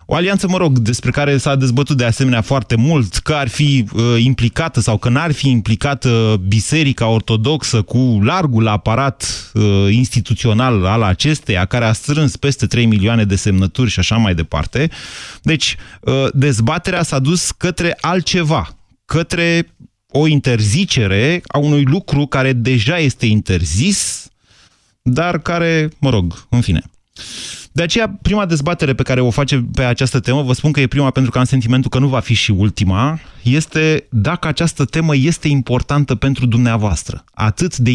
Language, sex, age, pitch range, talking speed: Romanian, male, 30-49, 105-140 Hz, 155 wpm